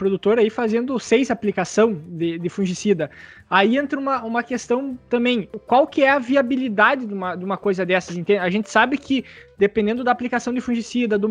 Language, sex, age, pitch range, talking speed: Portuguese, male, 20-39, 205-250 Hz, 185 wpm